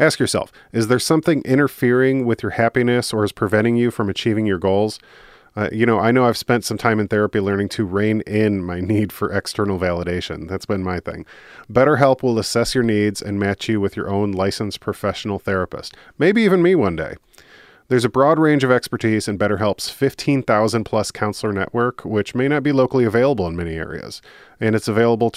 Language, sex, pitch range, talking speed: English, male, 105-130 Hz, 200 wpm